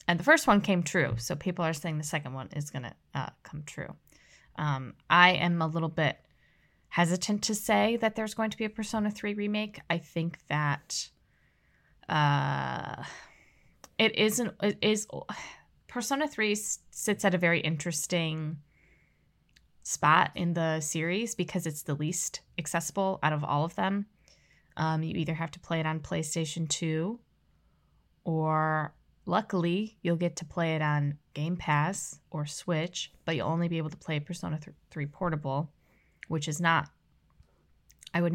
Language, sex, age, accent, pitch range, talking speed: English, female, 10-29, American, 155-185 Hz, 160 wpm